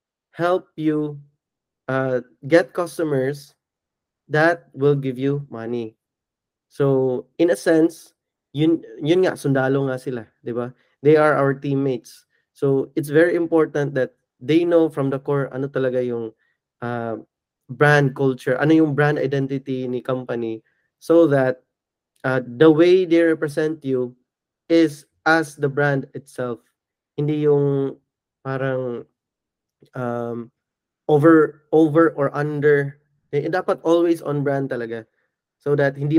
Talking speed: 130 wpm